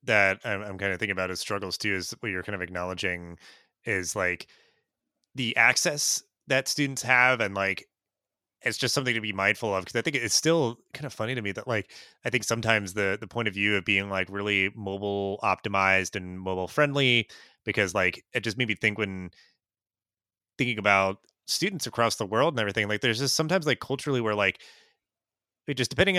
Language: English